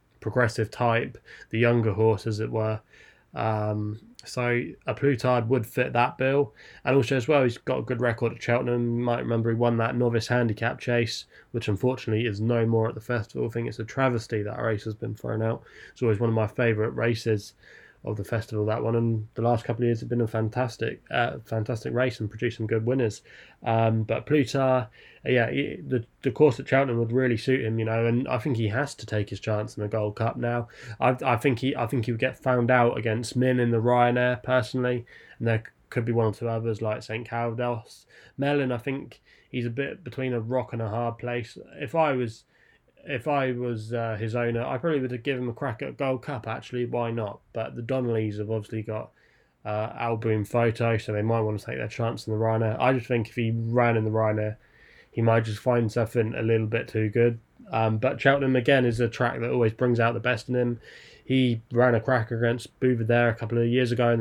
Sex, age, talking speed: male, 20-39, 230 wpm